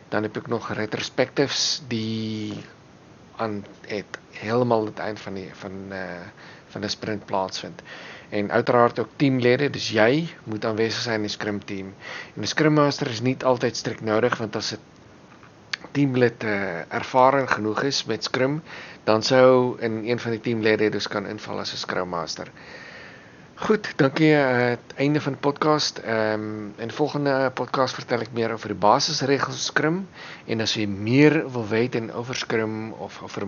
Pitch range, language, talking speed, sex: 105-130 Hz, Dutch, 165 wpm, male